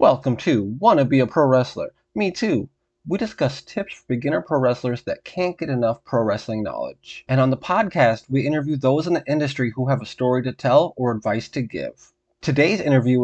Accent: American